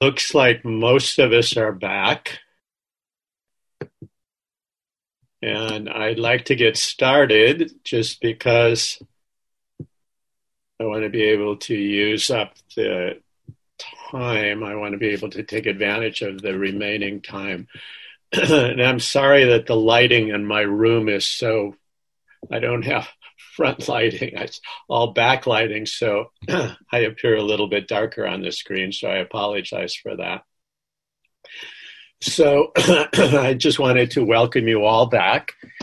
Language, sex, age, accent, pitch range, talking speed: English, male, 50-69, American, 105-120 Hz, 135 wpm